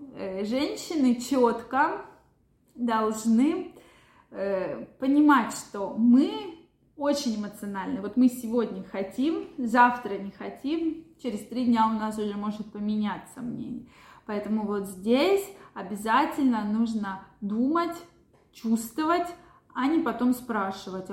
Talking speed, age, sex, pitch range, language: 100 wpm, 20-39, female, 205-255 Hz, Russian